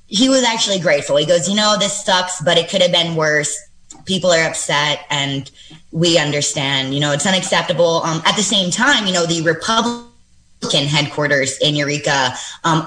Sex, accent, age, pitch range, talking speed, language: female, American, 20-39, 150-180 Hz, 180 wpm, English